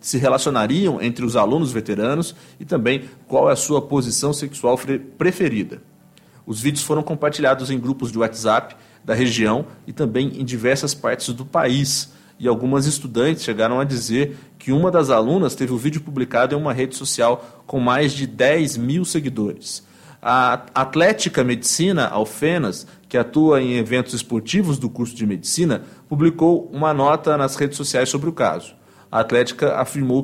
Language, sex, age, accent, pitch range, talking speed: English, male, 40-59, Brazilian, 125-160 Hz, 160 wpm